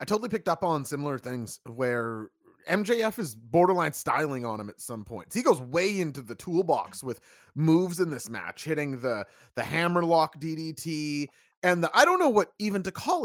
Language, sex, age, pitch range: English, male, 30-49, 145-200 Hz